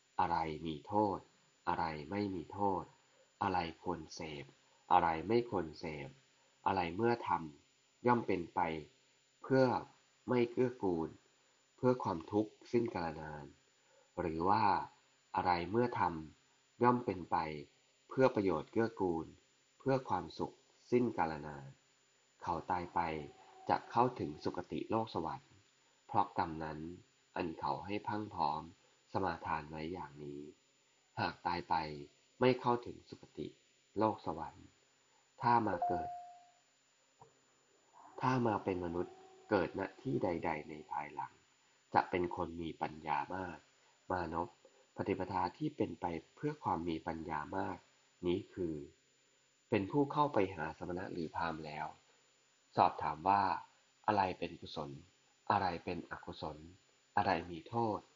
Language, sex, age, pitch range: English, male, 20-39, 80-125 Hz